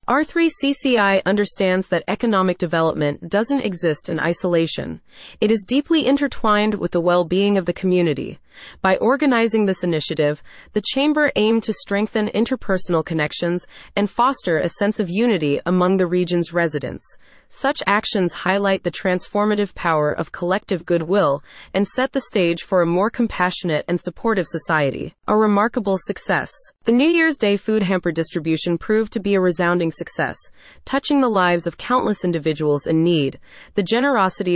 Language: English